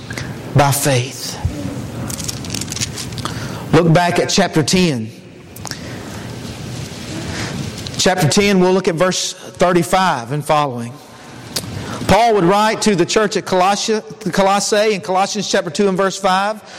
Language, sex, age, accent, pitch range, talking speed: English, male, 50-69, American, 175-230 Hz, 115 wpm